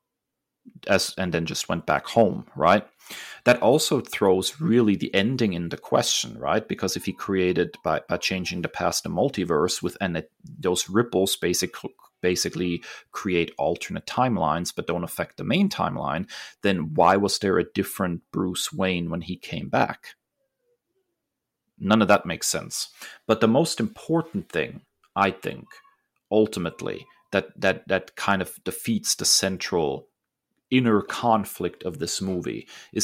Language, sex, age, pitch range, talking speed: English, male, 30-49, 95-135 Hz, 155 wpm